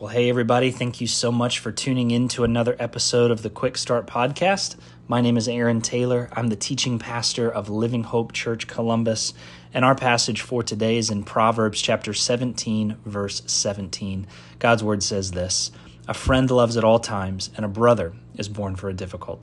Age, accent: 30-49, American